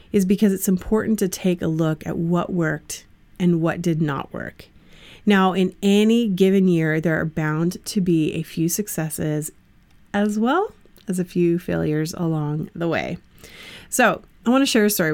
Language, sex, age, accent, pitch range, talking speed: English, female, 30-49, American, 165-205 Hz, 180 wpm